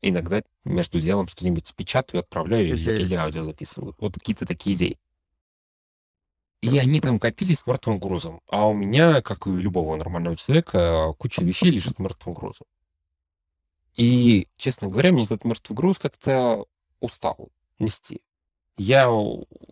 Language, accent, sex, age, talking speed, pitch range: Russian, native, male, 30-49, 140 wpm, 80-120 Hz